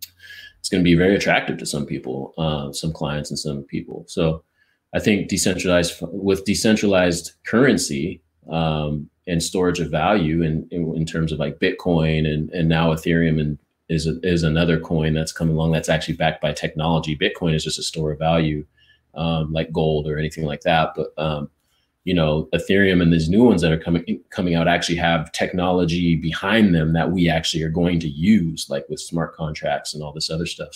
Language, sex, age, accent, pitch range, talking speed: English, male, 30-49, American, 80-85 Hz, 195 wpm